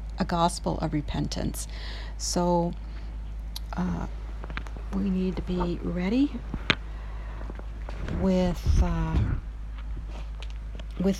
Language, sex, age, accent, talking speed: English, female, 50-69, American, 75 wpm